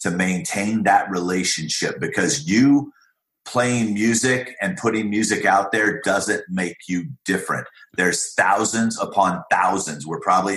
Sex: male